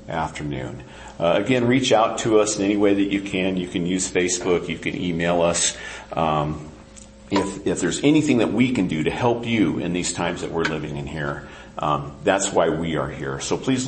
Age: 50-69